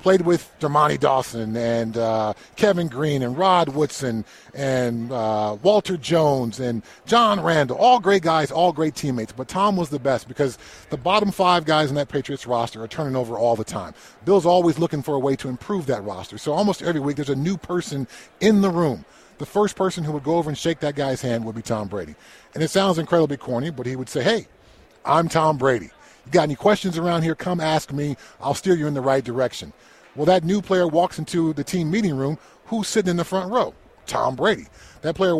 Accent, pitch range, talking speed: American, 145-195 Hz, 220 wpm